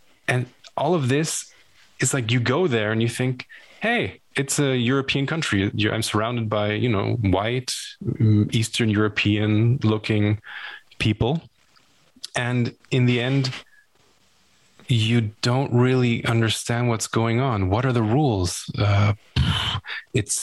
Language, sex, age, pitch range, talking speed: Russian, male, 20-39, 105-125 Hz, 130 wpm